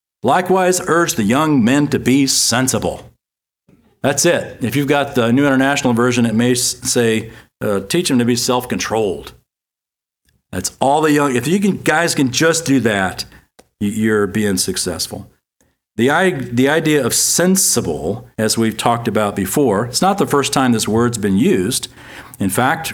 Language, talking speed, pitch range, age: English, 165 wpm, 110-140 Hz, 50-69